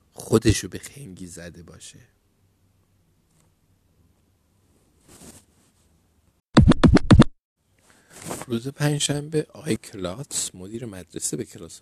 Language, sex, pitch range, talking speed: Persian, male, 95-115 Hz, 70 wpm